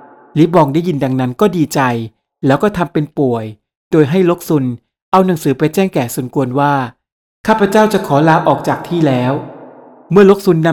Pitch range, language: 135-175 Hz, Thai